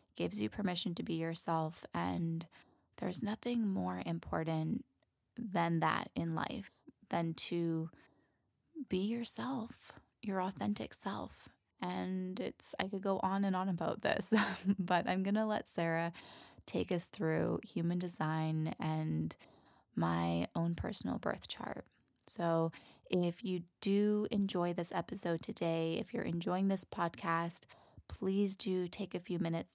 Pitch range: 165-200 Hz